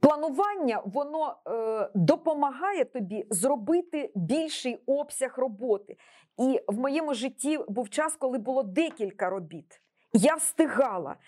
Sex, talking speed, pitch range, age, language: female, 110 wpm, 235-315 Hz, 40-59, Ukrainian